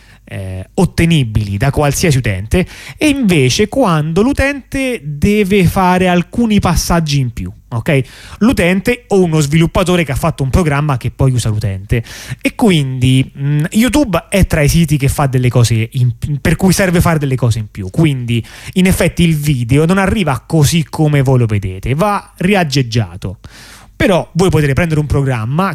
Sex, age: male, 30-49